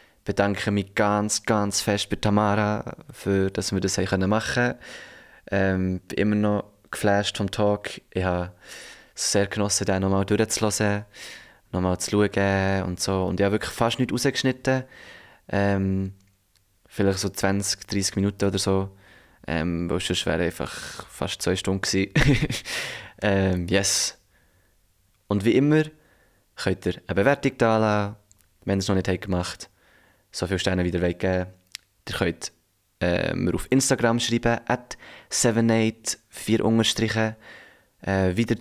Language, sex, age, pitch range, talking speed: German, male, 20-39, 95-110 Hz, 145 wpm